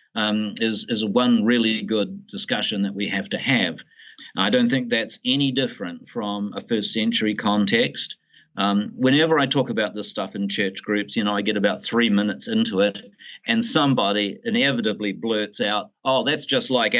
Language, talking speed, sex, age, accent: English, 180 wpm, male, 50-69, Australian